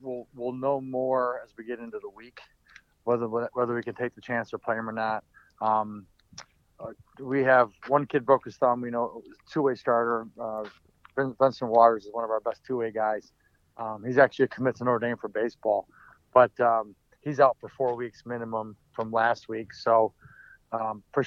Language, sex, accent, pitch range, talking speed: English, male, American, 115-135 Hz, 190 wpm